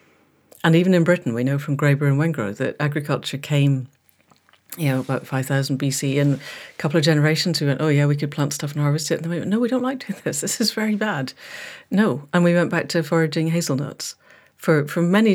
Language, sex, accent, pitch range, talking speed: English, female, British, 140-170 Hz, 230 wpm